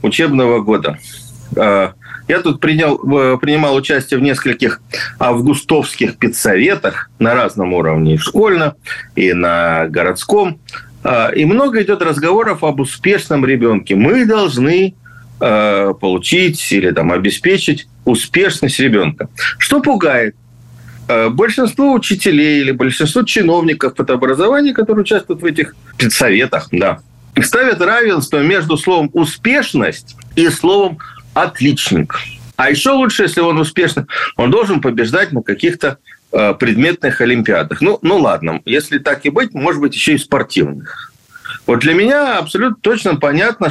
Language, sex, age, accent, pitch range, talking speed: Russian, male, 50-69, native, 120-185 Hz, 120 wpm